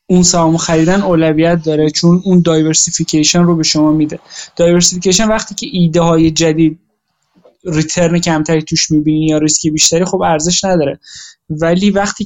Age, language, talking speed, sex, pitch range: 20-39, Persian, 140 wpm, male, 160-195 Hz